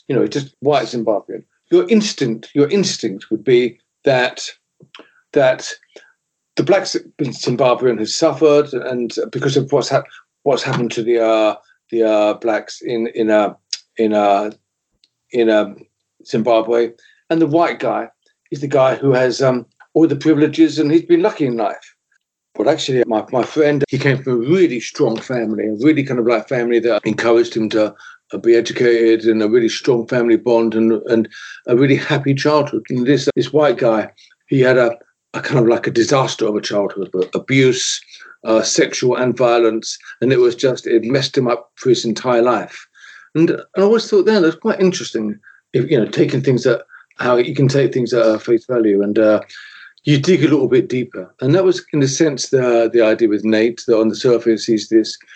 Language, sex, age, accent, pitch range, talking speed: English, male, 50-69, British, 115-155 Hz, 195 wpm